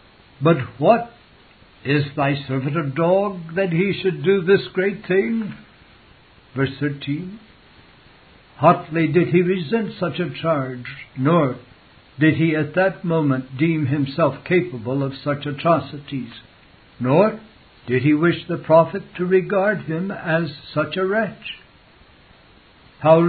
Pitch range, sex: 140-180 Hz, male